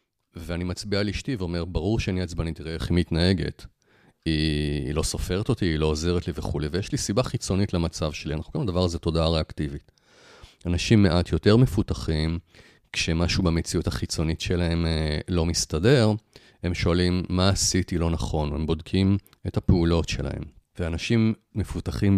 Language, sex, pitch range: Hebrew, male, 85-105 Hz